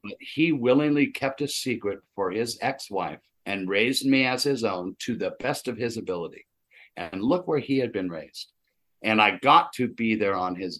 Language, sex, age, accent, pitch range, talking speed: English, male, 60-79, American, 100-125 Hz, 200 wpm